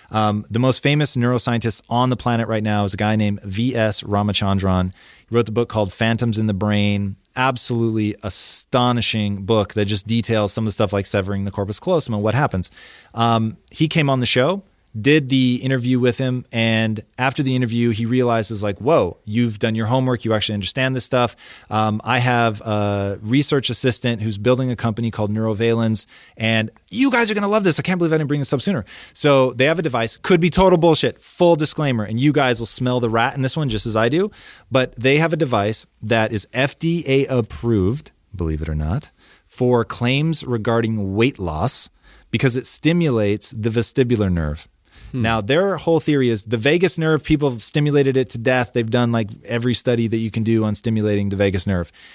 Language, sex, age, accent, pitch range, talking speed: English, male, 30-49, American, 110-135 Hz, 205 wpm